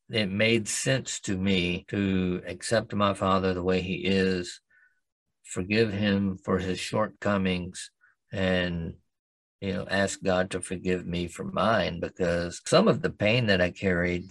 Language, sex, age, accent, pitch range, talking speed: English, male, 50-69, American, 90-105 Hz, 150 wpm